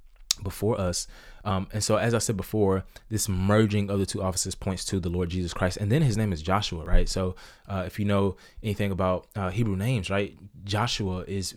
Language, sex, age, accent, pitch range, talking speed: English, male, 20-39, American, 95-110 Hz, 215 wpm